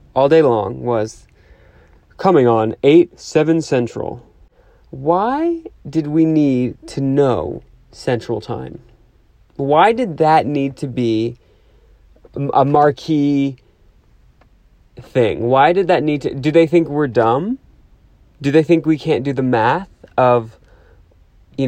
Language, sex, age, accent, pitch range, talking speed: English, male, 30-49, American, 120-150 Hz, 125 wpm